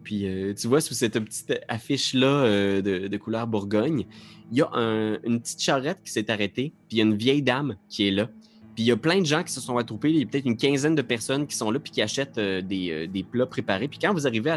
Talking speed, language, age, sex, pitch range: 280 wpm, French, 20-39, male, 105-155 Hz